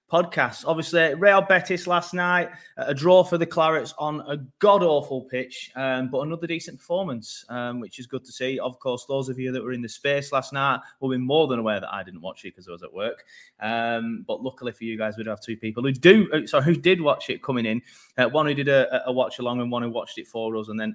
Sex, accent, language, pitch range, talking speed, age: male, British, English, 125-160 Hz, 255 wpm, 20-39